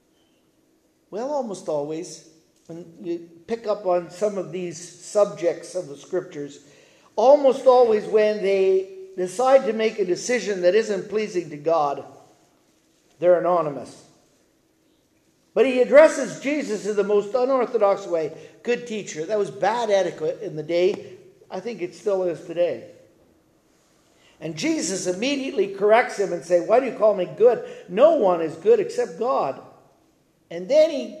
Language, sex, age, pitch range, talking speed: English, male, 50-69, 180-245 Hz, 150 wpm